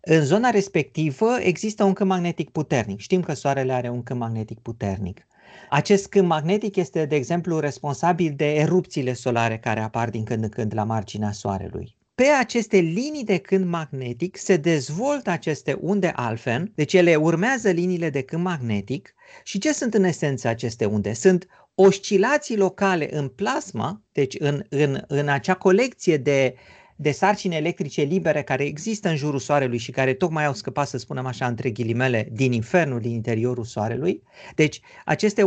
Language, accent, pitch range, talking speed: Romanian, native, 130-195 Hz, 165 wpm